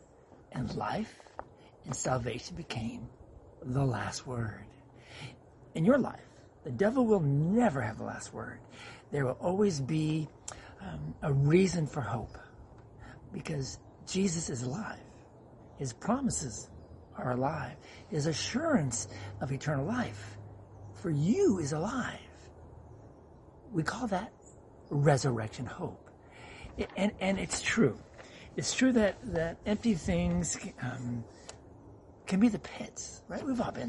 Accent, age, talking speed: American, 60-79, 120 wpm